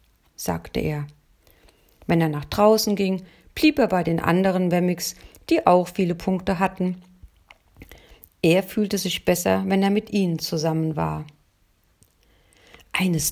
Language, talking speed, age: German, 130 wpm, 50-69